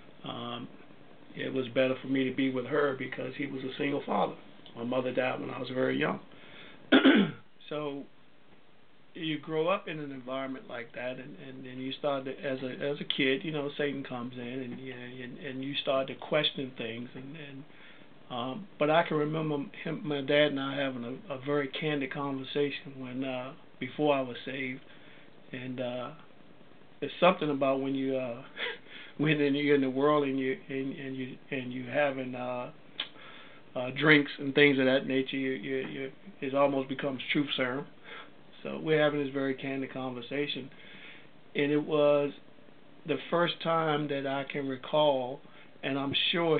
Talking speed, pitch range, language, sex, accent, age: 180 wpm, 130-145 Hz, English, male, American, 50-69